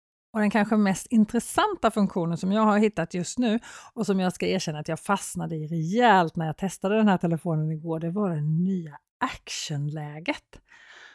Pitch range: 170-235 Hz